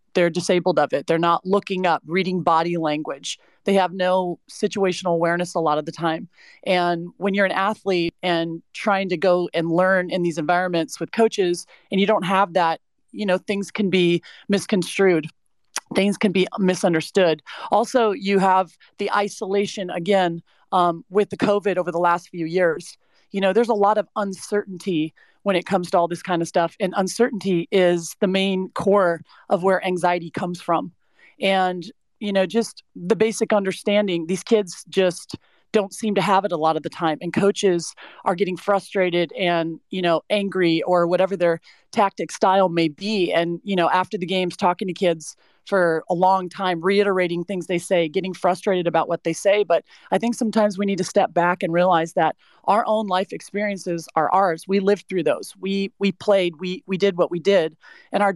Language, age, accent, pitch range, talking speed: English, 30-49, American, 175-200 Hz, 190 wpm